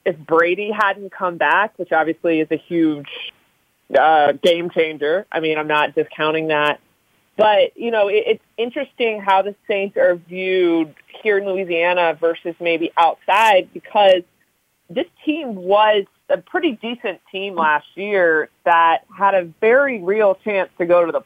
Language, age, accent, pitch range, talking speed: English, 30-49, American, 160-205 Hz, 155 wpm